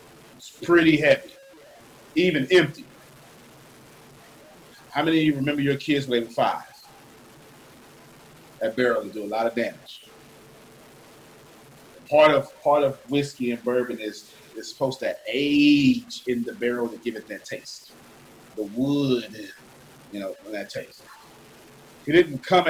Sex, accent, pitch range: male, American, 125-175 Hz